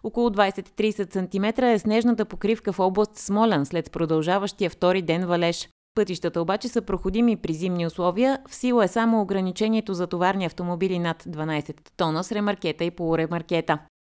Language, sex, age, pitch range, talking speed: Bulgarian, female, 20-39, 170-215 Hz, 155 wpm